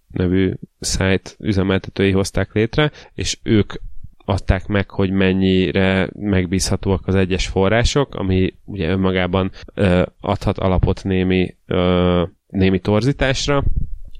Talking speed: 95 wpm